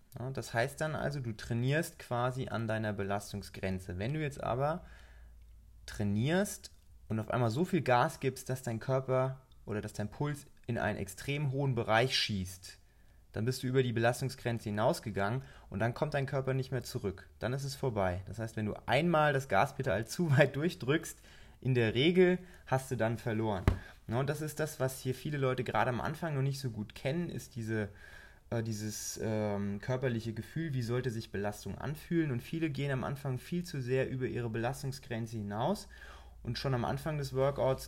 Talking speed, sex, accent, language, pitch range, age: 185 wpm, male, German, German, 105-135 Hz, 20-39